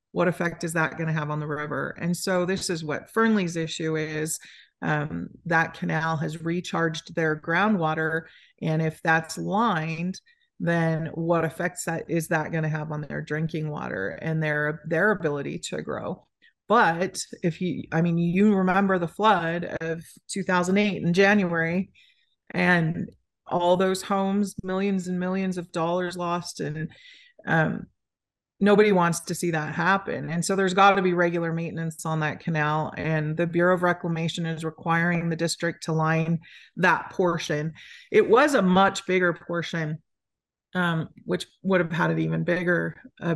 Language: English